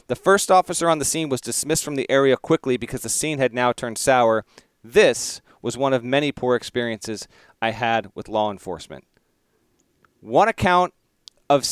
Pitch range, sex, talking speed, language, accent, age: 130-165 Hz, male, 175 wpm, English, American, 30-49